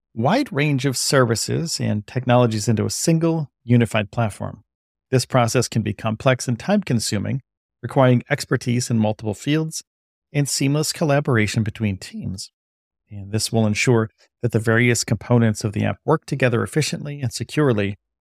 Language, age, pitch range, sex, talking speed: English, 40-59, 110-135 Hz, male, 145 wpm